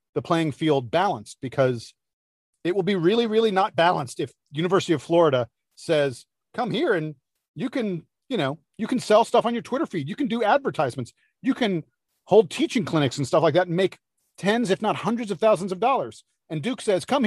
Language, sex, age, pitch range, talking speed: English, male, 40-59, 165-225 Hz, 205 wpm